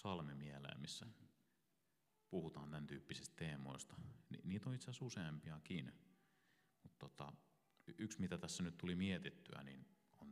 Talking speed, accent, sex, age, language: 135 wpm, native, male, 30-49, Finnish